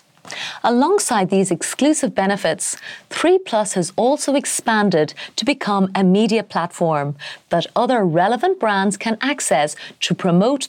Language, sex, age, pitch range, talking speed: English, female, 30-49, 175-245 Hz, 125 wpm